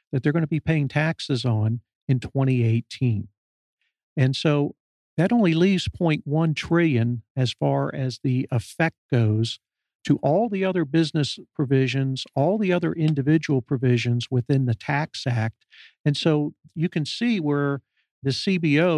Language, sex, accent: English, male, American